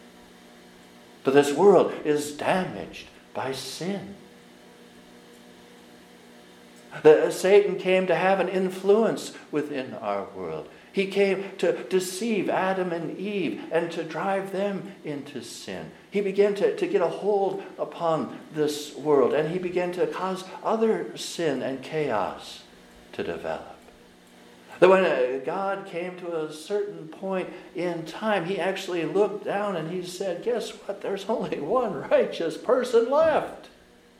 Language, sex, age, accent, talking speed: English, male, 60-79, American, 130 wpm